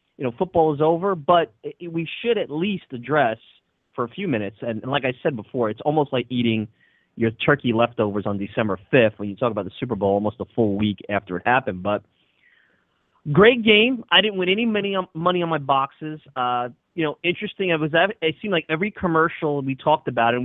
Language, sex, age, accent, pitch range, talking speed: English, male, 30-49, American, 115-160 Hz, 205 wpm